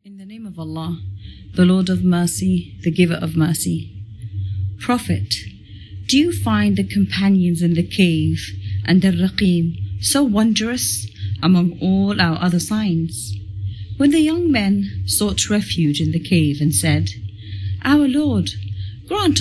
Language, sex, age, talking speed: English, female, 40-59, 140 wpm